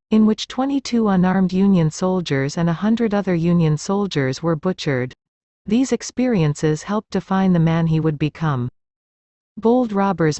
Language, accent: English, American